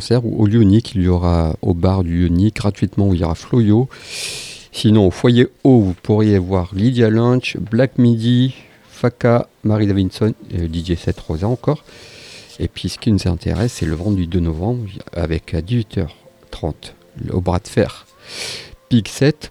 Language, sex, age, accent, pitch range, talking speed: French, male, 50-69, French, 90-115 Hz, 160 wpm